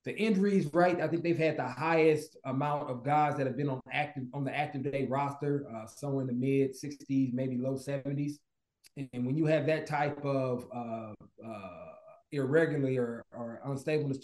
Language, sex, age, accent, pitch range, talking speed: English, male, 30-49, American, 125-150 Hz, 185 wpm